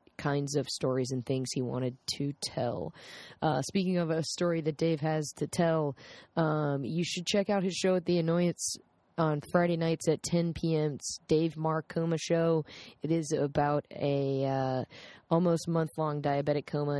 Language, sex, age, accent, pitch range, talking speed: English, female, 20-39, American, 140-165 Hz, 170 wpm